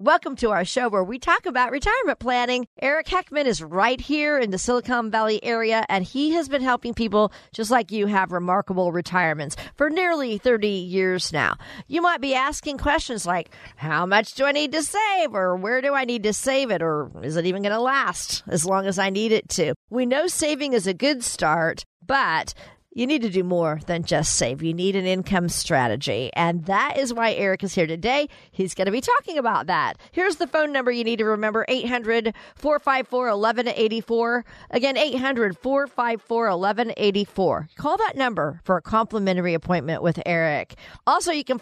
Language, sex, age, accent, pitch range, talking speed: English, female, 50-69, American, 185-265 Hz, 190 wpm